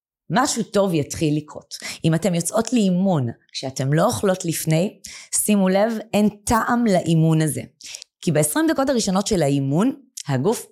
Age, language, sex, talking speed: 20-39, Hebrew, female, 140 wpm